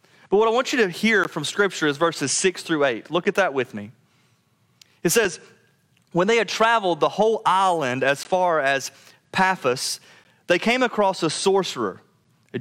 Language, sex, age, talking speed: English, male, 30-49, 180 wpm